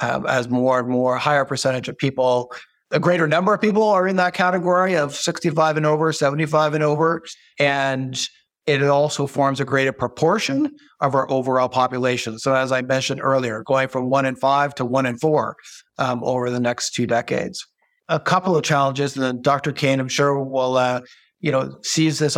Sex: male